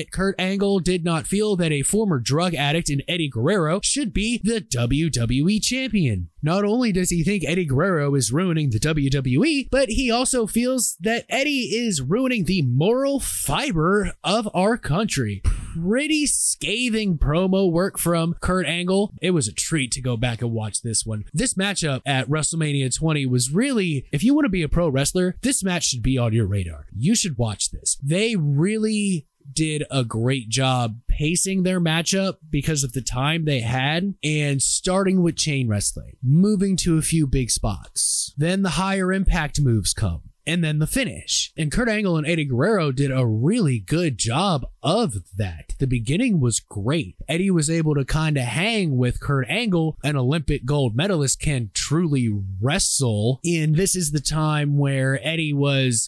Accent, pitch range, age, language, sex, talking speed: American, 135-195 Hz, 20-39, English, male, 175 wpm